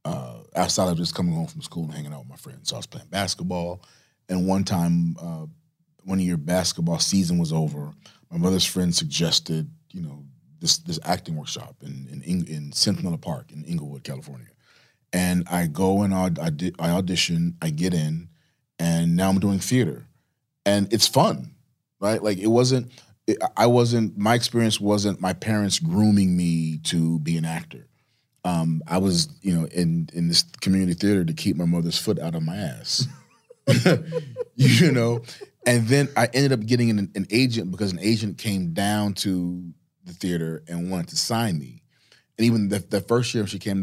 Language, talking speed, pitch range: English, 190 wpm, 85-120 Hz